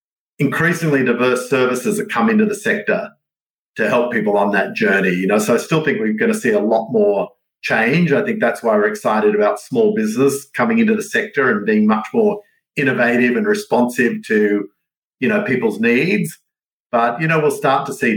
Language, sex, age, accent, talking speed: English, male, 50-69, Australian, 200 wpm